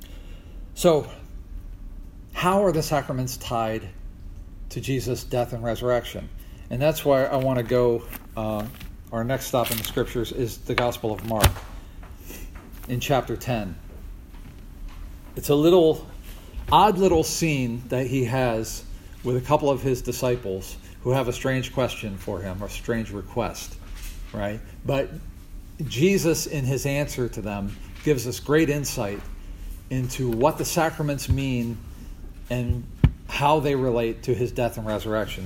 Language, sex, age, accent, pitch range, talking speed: English, male, 50-69, American, 95-125 Hz, 140 wpm